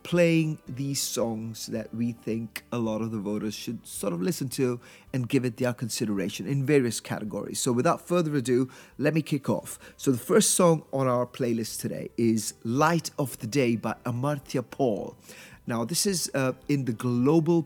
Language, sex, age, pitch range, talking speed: English, male, 30-49, 115-140 Hz, 185 wpm